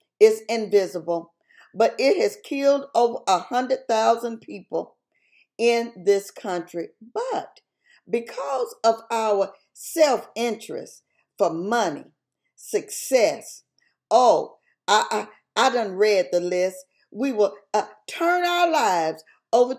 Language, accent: English, American